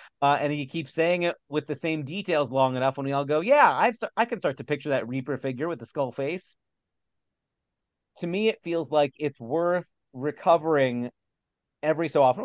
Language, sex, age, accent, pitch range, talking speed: English, male, 40-59, American, 135-165 Hz, 205 wpm